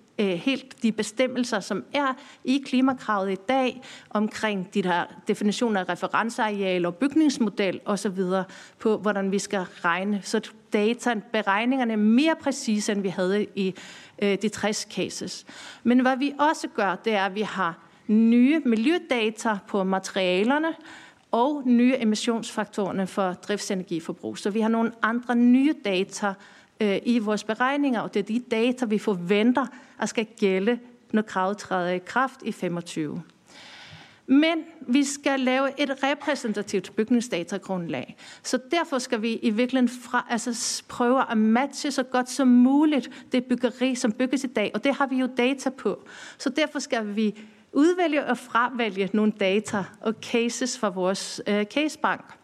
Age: 40-59